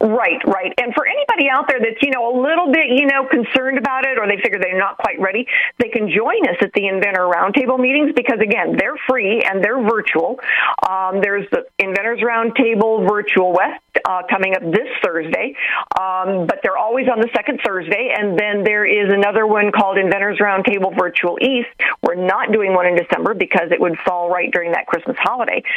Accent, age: American, 50-69